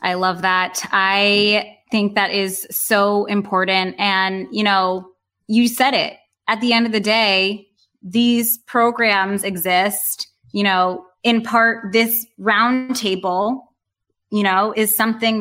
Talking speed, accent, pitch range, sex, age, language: 130 wpm, American, 185-230 Hz, female, 20-39, English